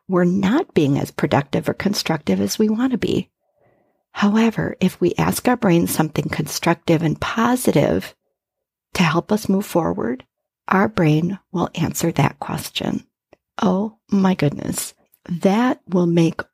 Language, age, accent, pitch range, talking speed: English, 50-69, American, 175-225 Hz, 140 wpm